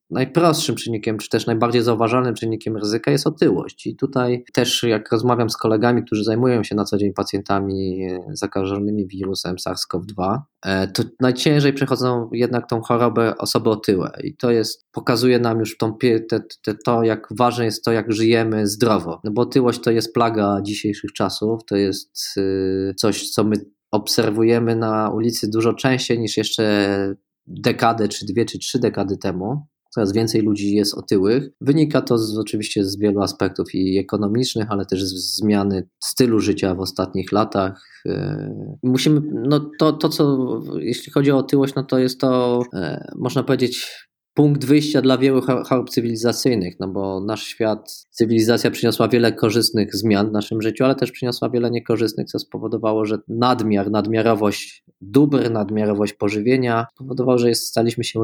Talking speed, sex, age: 150 wpm, male, 20-39